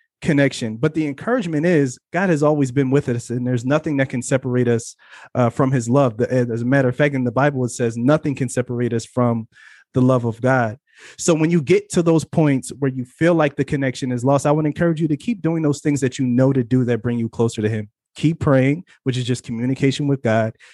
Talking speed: 245 wpm